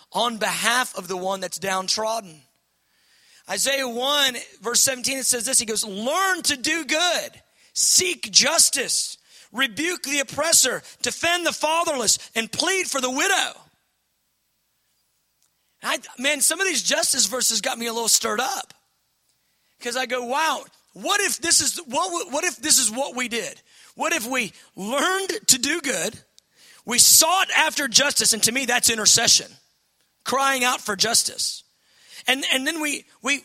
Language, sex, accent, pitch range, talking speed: English, male, American, 225-310 Hz, 155 wpm